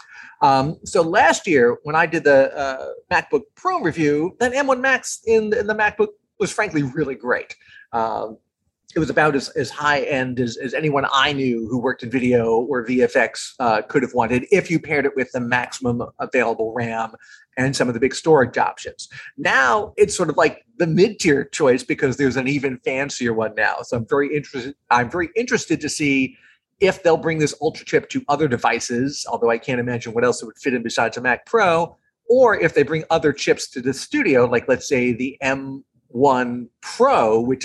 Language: English